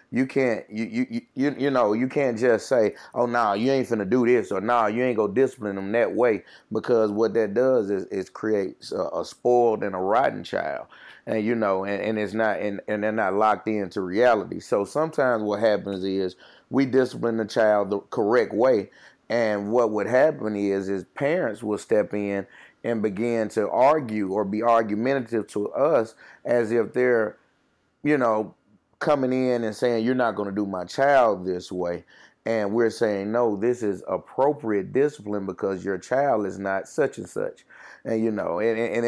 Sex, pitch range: male, 100-120 Hz